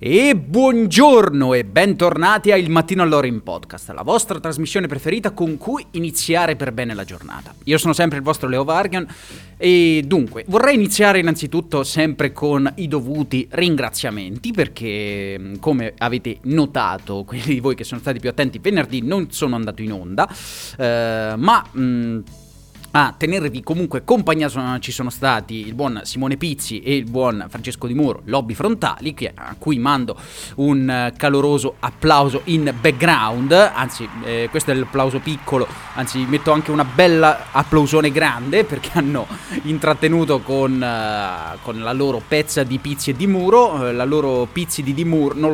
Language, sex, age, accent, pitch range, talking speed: Italian, male, 30-49, native, 125-160 Hz, 155 wpm